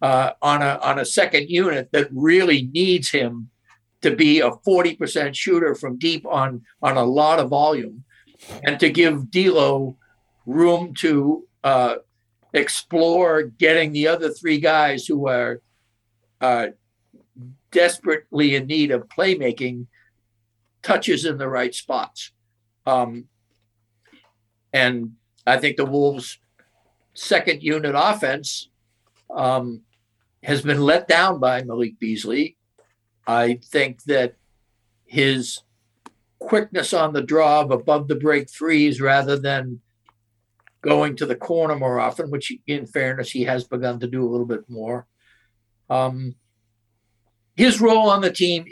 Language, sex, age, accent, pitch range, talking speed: English, male, 60-79, American, 115-150 Hz, 130 wpm